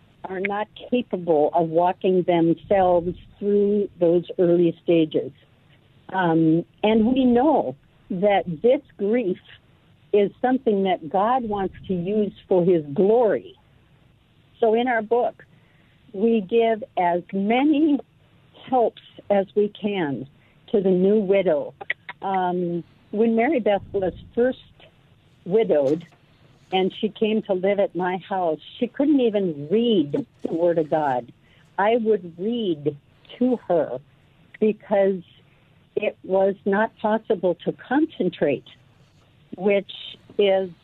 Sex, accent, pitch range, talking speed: female, American, 170-220 Hz, 120 wpm